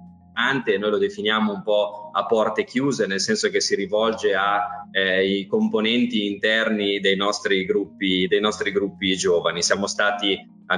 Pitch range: 100-125 Hz